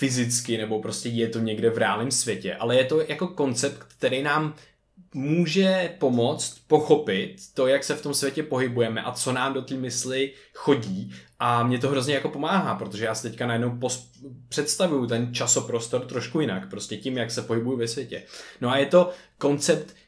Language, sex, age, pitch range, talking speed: Czech, male, 20-39, 120-150 Hz, 185 wpm